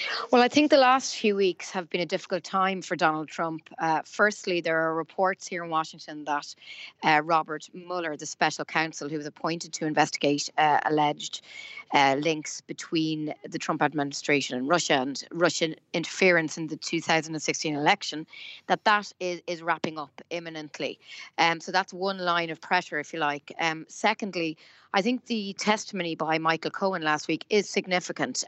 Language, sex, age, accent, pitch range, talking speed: English, female, 30-49, Irish, 160-190 Hz, 175 wpm